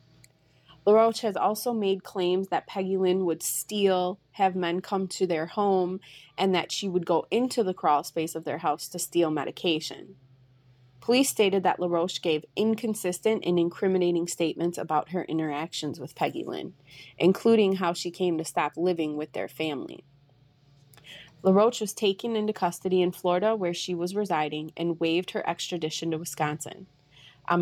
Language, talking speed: English, 160 wpm